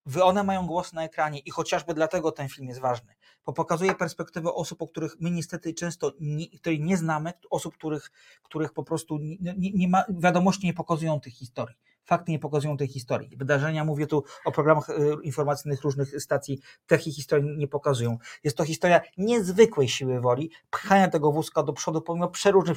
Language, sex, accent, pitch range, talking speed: Polish, male, native, 145-180 Hz, 170 wpm